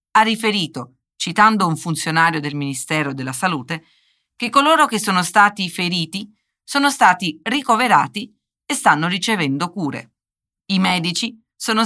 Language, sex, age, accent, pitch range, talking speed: Portuguese, female, 40-59, Italian, 165-240 Hz, 125 wpm